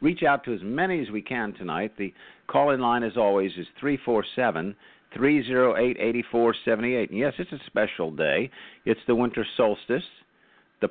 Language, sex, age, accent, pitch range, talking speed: English, male, 50-69, American, 90-125 Hz, 200 wpm